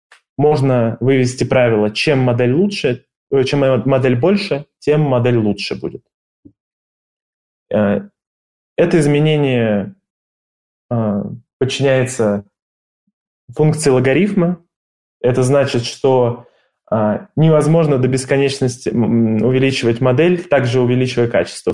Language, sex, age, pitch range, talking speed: Russian, male, 20-39, 115-140 Hz, 75 wpm